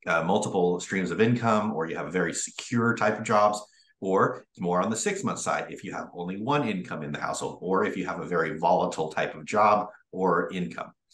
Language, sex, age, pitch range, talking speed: English, male, 30-49, 100-130 Hz, 225 wpm